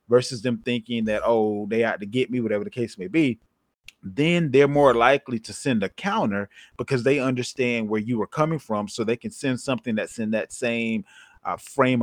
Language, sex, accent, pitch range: English, male, American, 110-130 Hz